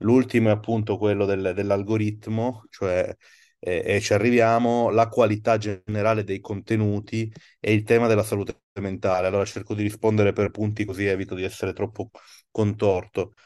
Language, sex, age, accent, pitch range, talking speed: Italian, male, 30-49, native, 105-115 Hz, 145 wpm